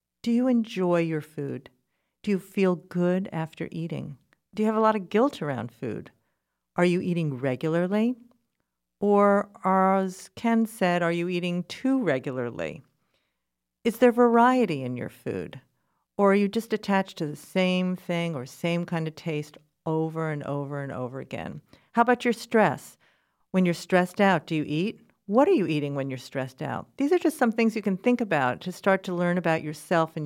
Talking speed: 185 wpm